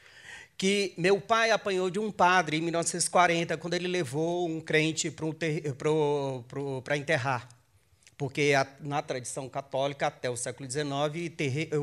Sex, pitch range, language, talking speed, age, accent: male, 140-200 Hz, Portuguese, 145 wpm, 40-59, Brazilian